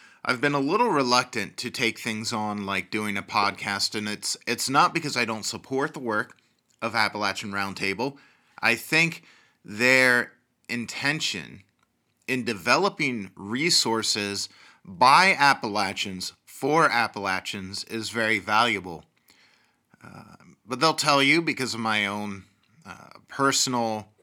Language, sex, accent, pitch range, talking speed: English, male, American, 100-125 Hz, 125 wpm